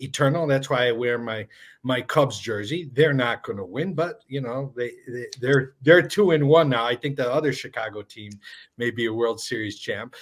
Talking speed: 215 wpm